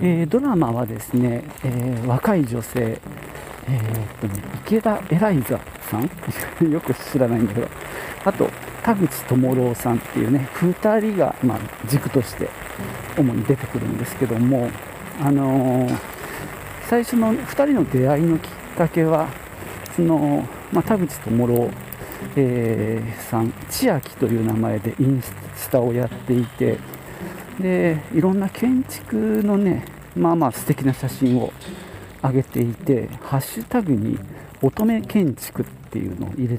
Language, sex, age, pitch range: Japanese, male, 50-69, 115-160 Hz